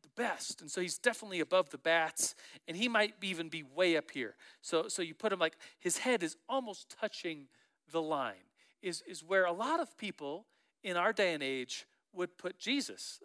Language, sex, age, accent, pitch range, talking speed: English, male, 40-59, American, 180-250 Hz, 205 wpm